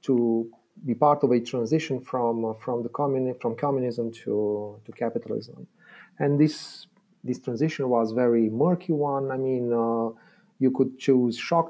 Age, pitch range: 40-59, 115-145 Hz